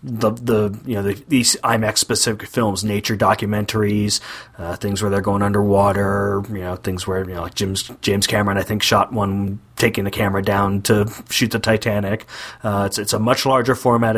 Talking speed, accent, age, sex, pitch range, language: 195 wpm, American, 30-49, male, 100-115 Hz, English